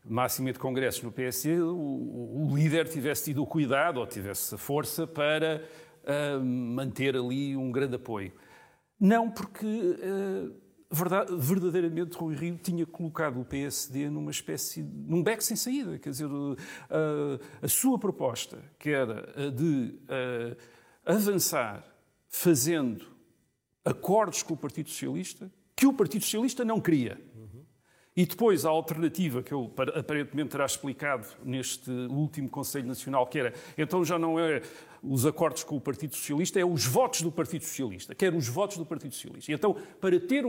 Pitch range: 140-200 Hz